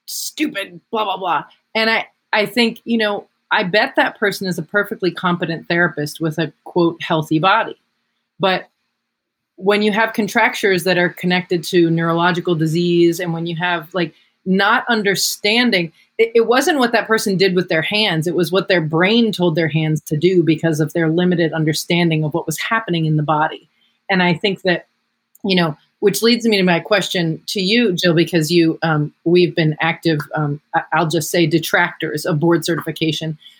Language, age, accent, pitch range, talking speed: English, 30-49, American, 160-200 Hz, 185 wpm